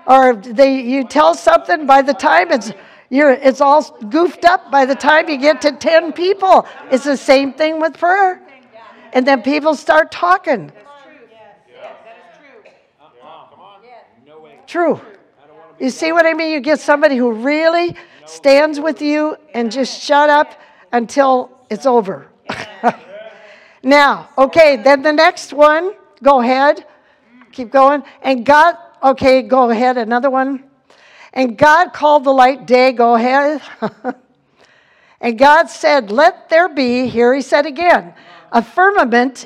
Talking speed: 140 wpm